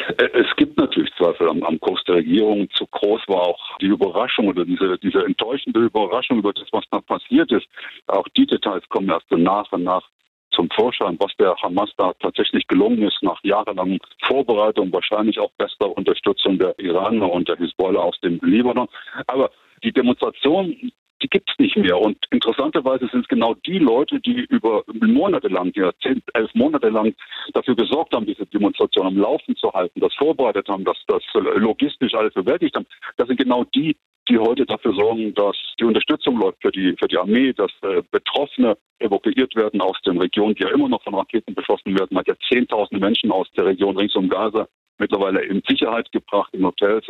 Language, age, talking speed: German, 50-69, 185 wpm